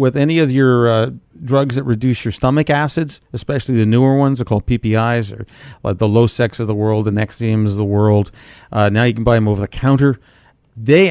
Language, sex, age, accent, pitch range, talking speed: English, male, 50-69, American, 110-145 Hz, 220 wpm